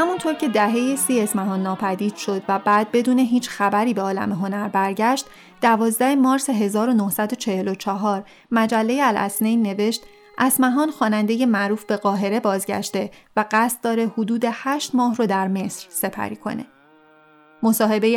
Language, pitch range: Persian, 205-245 Hz